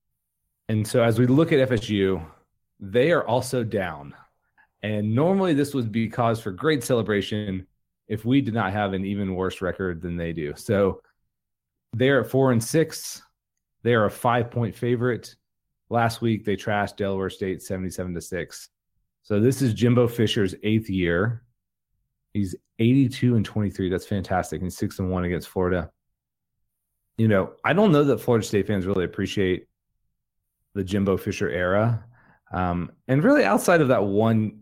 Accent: American